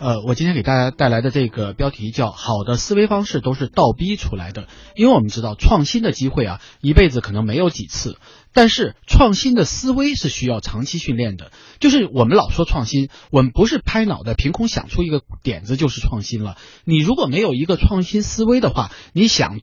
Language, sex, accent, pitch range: Chinese, male, native, 120-195 Hz